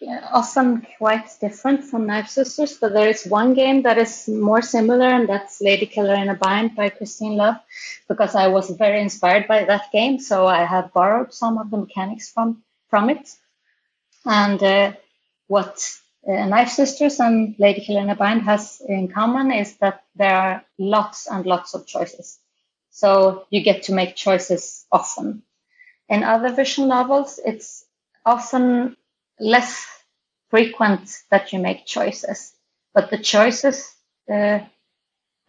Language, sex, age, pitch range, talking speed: English, female, 30-49, 195-230 Hz, 155 wpm